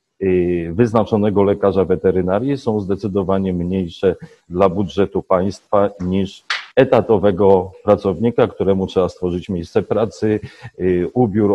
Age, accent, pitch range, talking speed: 40-59, native, 95-110 Hz, 95 wpm